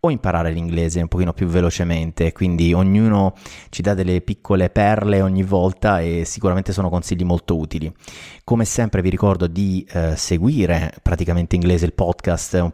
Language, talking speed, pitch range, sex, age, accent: Italian, 155 wpm, 90-100 Hz, male, 30-49, native